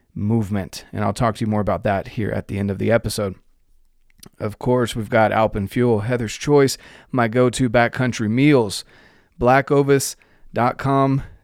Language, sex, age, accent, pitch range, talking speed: English, male, 30-49, American, 105-130 Hz, 145 wpm